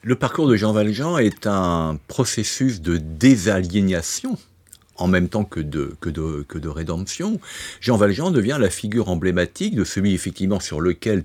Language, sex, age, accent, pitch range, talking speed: French, male, 60-79, French, 85-110 Hz, 165 wpm